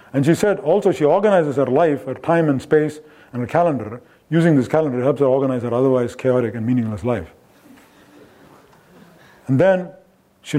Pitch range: 125-155 Hz